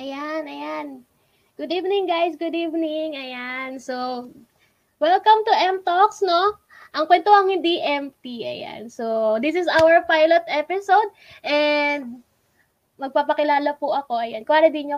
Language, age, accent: Filipino, 20-39, native